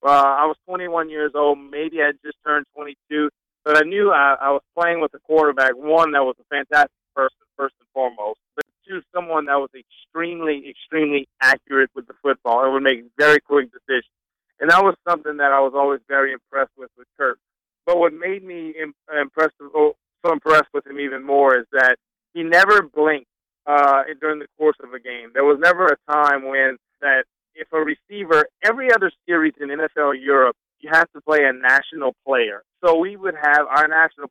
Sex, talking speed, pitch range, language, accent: male, 200 wpm, 140-160 Hz, English, American